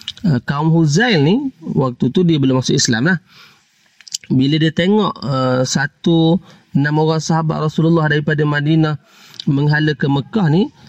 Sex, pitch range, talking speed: male, 130-170 Hz, 145 wpm